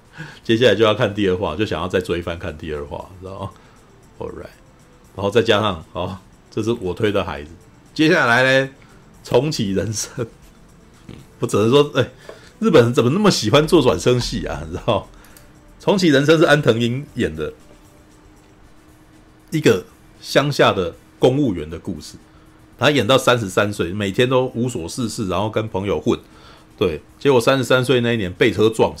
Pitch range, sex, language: 95-130 Hz, male, Chinese